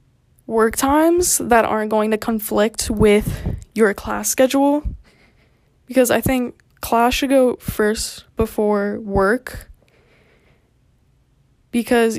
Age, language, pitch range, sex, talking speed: 10-29, English, 215-245 Hz, female, 105 wpm